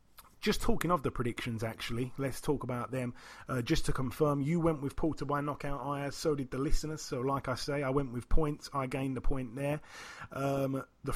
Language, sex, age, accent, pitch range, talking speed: English, male, 30-49, British, 135-160 Hz, 220 wpm